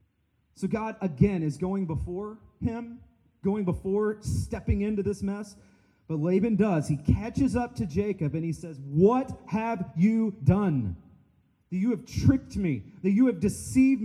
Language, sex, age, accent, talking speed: English, male, 30-49, American, 160 wpm